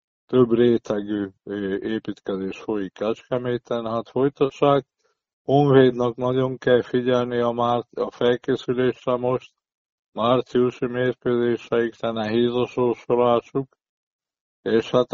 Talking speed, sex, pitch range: 95 wpm, male, 110-125 Hz